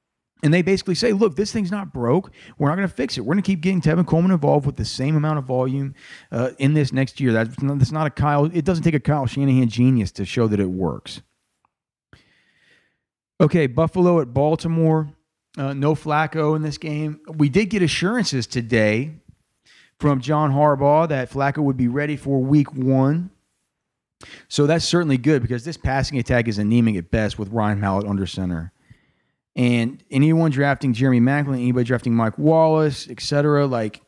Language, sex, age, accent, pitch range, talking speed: English, male, 40-59, American, 120-155 Hz, 185 wpm